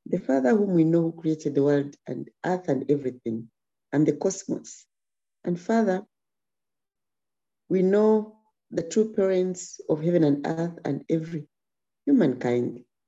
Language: English